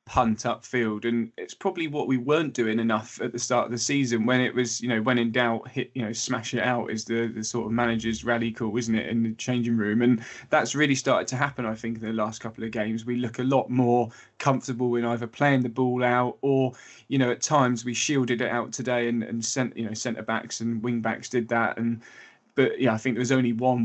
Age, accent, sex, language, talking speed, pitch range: 20-39, British, male, English, 255 wpm, 115-130 Hz